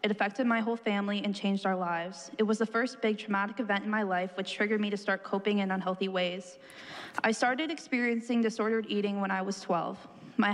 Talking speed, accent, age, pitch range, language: 215 wpm, American, 20-39, 190-220 Hz, English